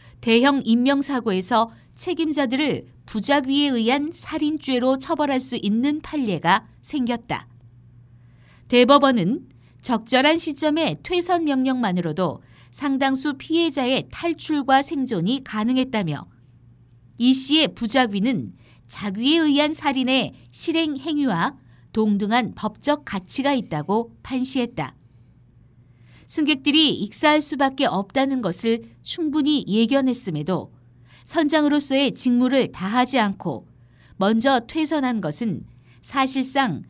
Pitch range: 175-280 Hz